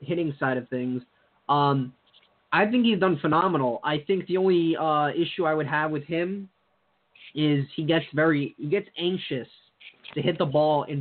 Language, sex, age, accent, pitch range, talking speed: English, male, 20-39, American, 135-165 Hz, 180 wpm